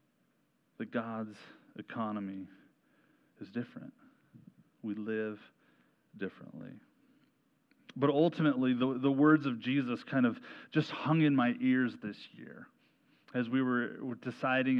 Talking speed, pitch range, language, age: 115 wpm, 115-150 Hz, English, 30-49